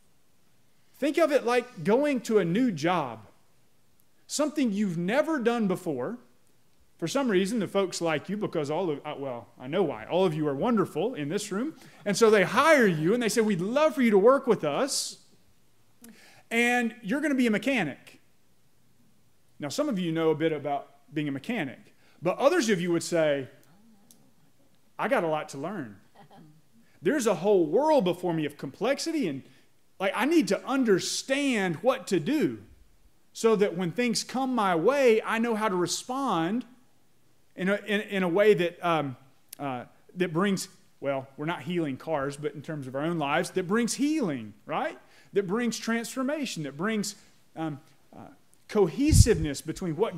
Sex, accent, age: male, American, 30-49